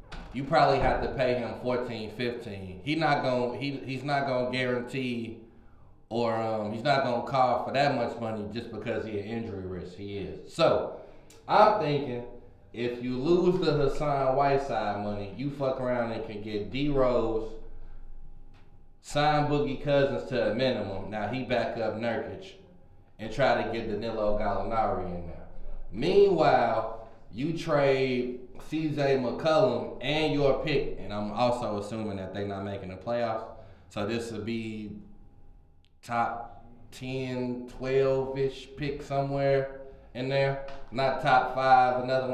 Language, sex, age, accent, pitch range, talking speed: English, male, 20-39, American, 110-135 Hz, 150 wpm